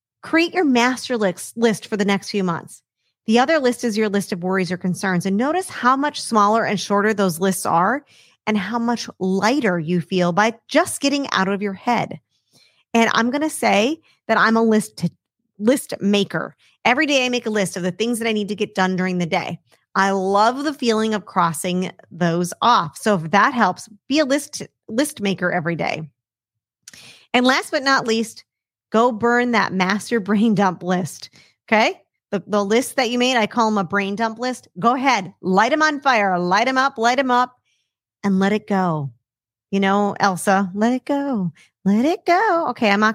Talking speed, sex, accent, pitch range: 205 wpm, female, American, 185-235 Hz